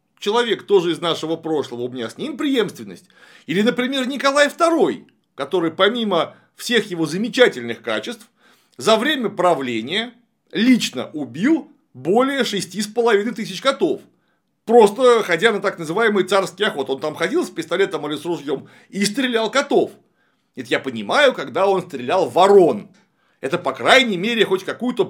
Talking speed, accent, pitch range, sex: 145 wpm, native, 165-240 Hz, male